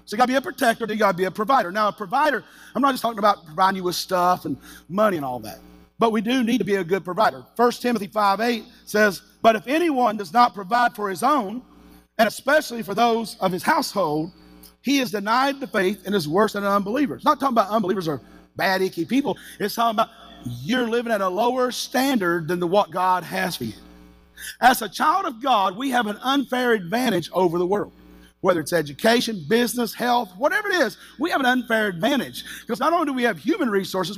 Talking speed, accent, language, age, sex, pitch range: 230 wpm, American, English, 40-59, male, 185-255 Hz